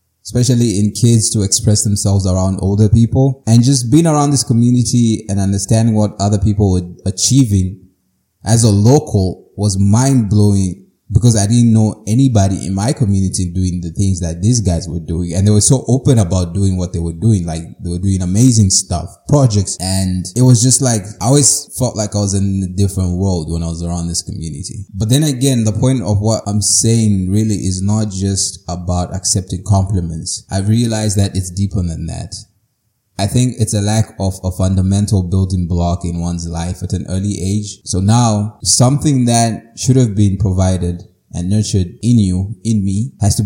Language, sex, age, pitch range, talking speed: English, male, 20-39, 95-110 Hz, 190 wpm